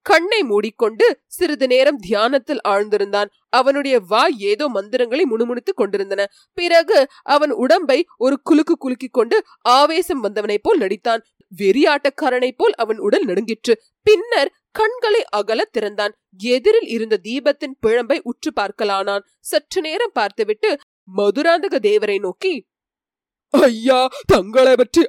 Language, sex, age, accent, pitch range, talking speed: Tamil, female, 20-39, native, 220-295 Hz, 110 wpm